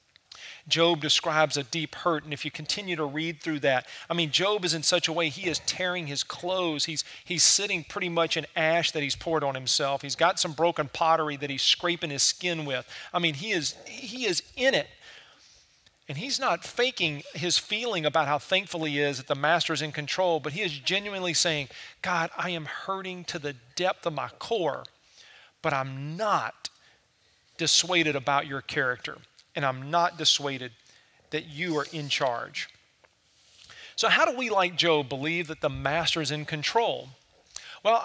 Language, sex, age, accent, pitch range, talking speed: English, male, 40-59, American, 145-175 Hz, 185 wpm